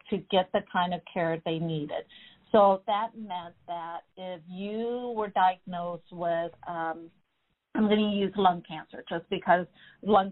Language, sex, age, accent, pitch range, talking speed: English, female, 50-69, American, 175-210 Hz, 155 wpm